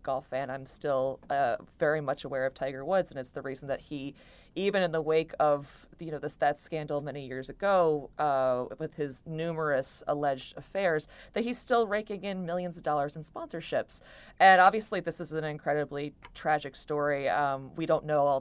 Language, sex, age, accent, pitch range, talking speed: English, female, 30-49, American, 145-170 Hz, 190 wpm